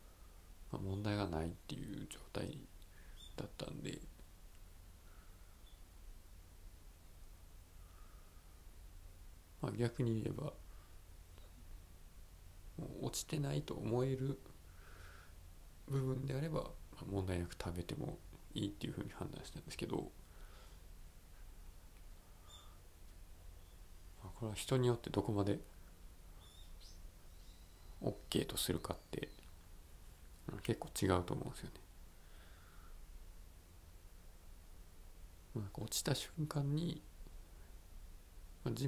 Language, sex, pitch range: Japanese, male, 80-90 Hz